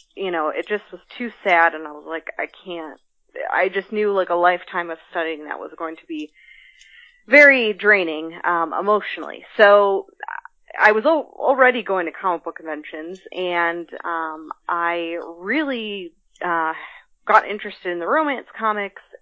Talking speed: 160 wpm